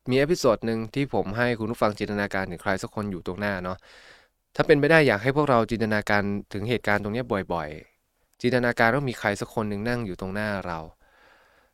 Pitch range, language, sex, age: 95-125 Hz, Thai, male, 20-39